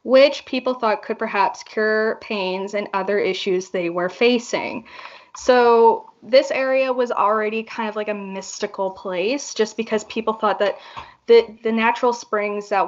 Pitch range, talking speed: 200-245 Hz, 160 wpm